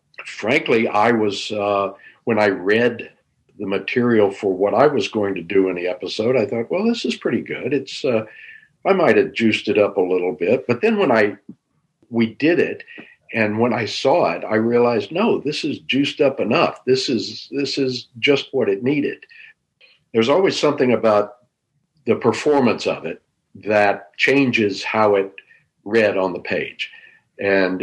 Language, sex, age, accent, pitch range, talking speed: English, male, 60-79, American, 100-130 Hz, 175 wpm